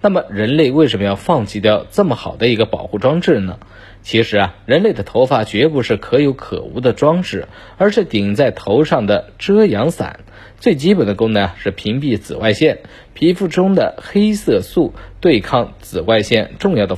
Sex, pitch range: male, 100-145 Hz